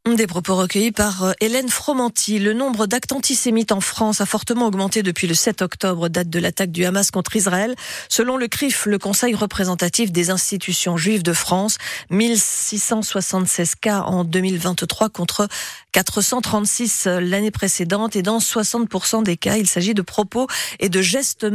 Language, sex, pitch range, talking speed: French, female, 185-230 Hz, 160 wpm